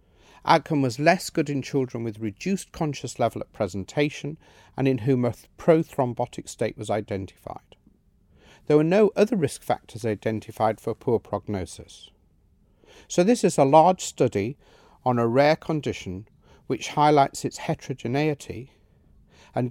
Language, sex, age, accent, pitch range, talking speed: English, male, 50-69, British, 105-150 Hz, 140 wpm